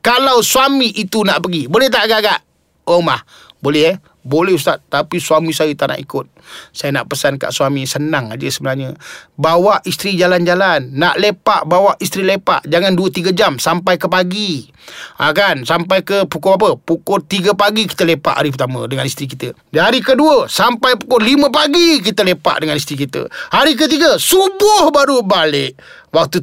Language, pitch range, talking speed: Malay, 145-235 Hz, 170 wpm